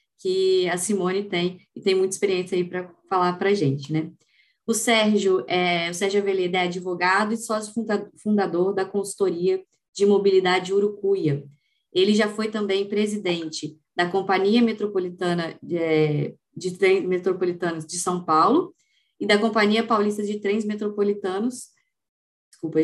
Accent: Brazilian